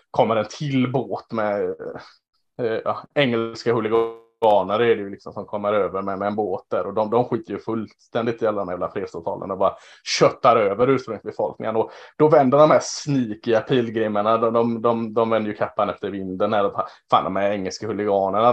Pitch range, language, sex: 105-130 Hz, Swedish, male